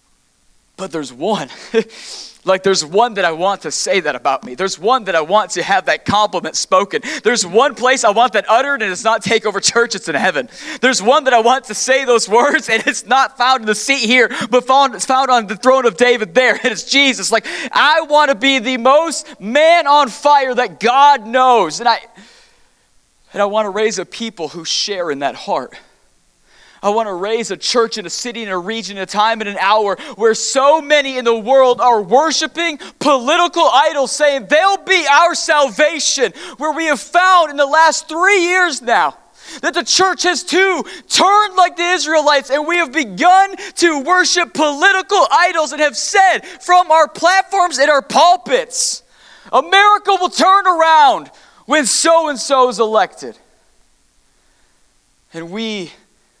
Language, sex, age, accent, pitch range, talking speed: English, male, 40-59, American, 225-320 Hz, 185 wpm